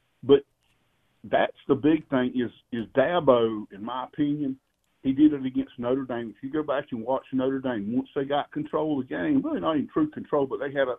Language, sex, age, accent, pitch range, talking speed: English, male, 50-69, American, 130-155 Hz, 225 wpm